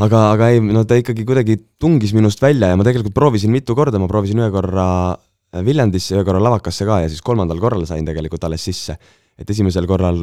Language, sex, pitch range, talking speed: English, male, 85-100 Hz, 195 wpm